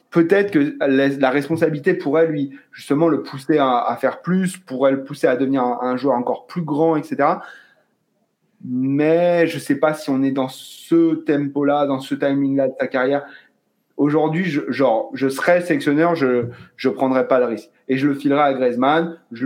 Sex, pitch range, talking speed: male, 130-160 Hz, 190 wpm